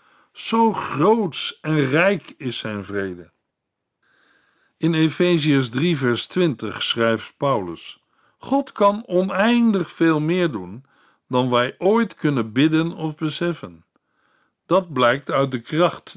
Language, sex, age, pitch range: Dutch, male, 60-79, 130-180 Hz